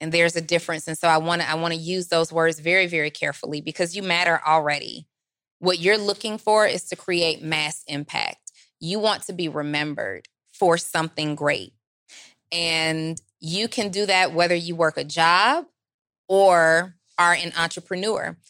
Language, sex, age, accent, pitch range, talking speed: English, female, 20-39, American, 160-190 Hz, 165 wpm